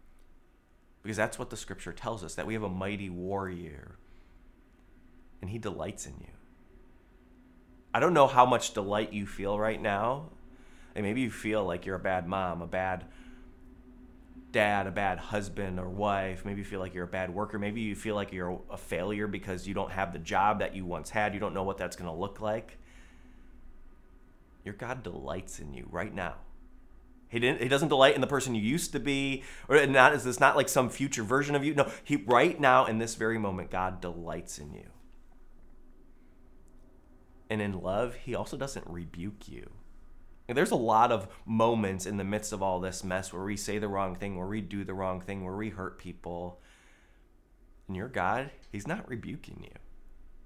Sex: male